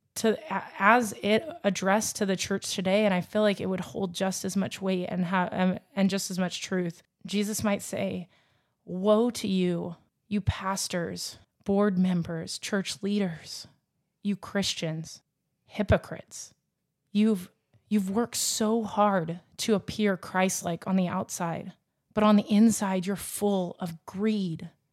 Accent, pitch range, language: American, 180-210 Hz, English